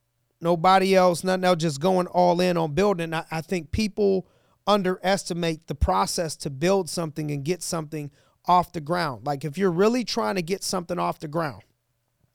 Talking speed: 180 wpm